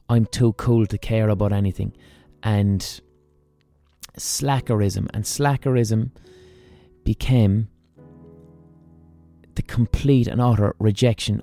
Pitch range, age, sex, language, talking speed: 95-115 Hz, 20-39, male, English, 90 wpm